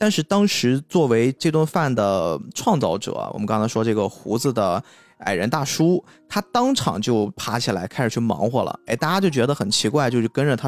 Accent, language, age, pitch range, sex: native, Chinese, 20-39, 110-160 Hz, male